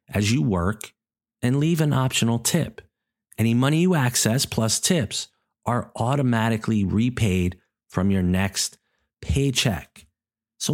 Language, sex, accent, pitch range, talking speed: English, male, American, 105-145 Hz, 125 wpm